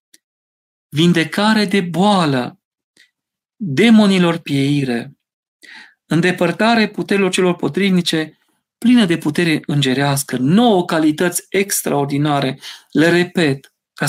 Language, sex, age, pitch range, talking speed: Romanian, male, 40-59, 140-185 Hz, 80 wpm